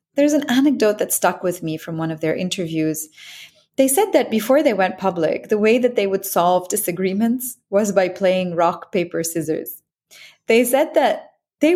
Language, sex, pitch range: English, female, 170-235 Hz